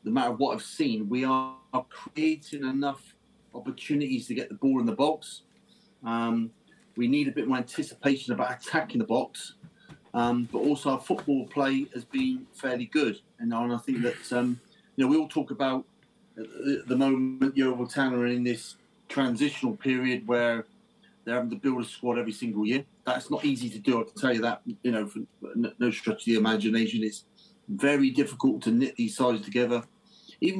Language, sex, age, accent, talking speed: English, male, 30-49, British, 180 wpm